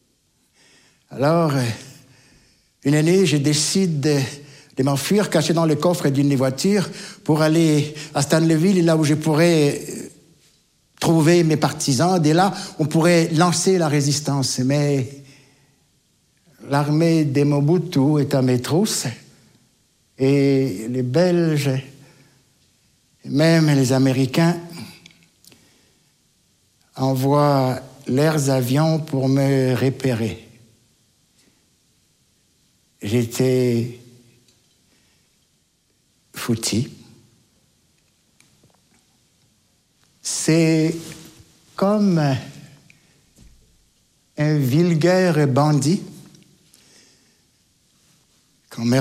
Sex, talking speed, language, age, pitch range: male, 75 wpm, French, 60-79, 135-165 Hz